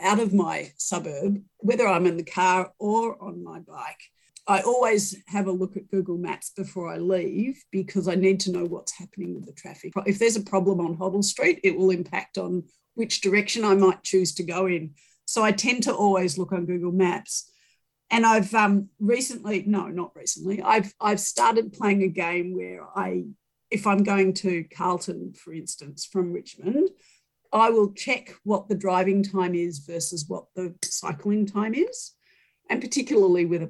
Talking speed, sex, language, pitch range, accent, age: 185 wpm, female, English, 180-205 Hz, Australian, 50-69